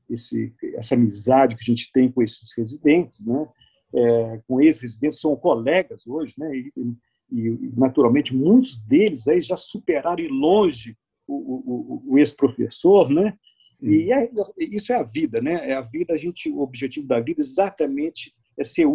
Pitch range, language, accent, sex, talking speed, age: 125-205 Hz, Portuguese, Brazilian, male, 170 wpm, 50-69